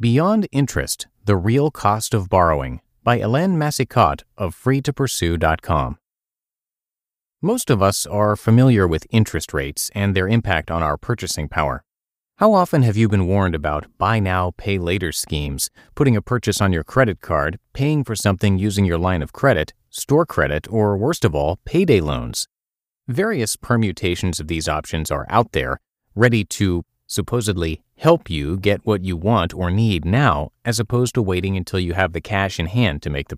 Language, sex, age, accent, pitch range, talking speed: English, male, 30-49, American, 85-120 Hz, 175 wpm